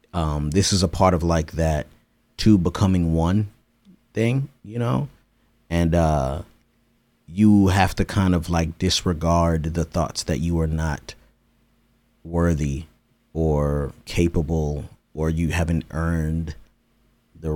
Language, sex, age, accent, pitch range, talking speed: English, male, 30-49, American, 80-100 Hz, 125 wpm